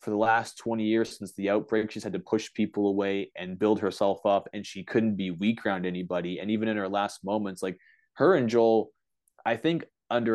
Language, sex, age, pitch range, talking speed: English, male, 20-39, 100-120 Hz, 220 wpm